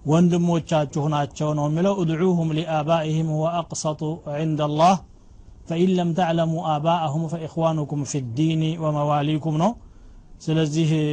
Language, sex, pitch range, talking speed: Amharic, male, 145-165 Hz, 95 wpm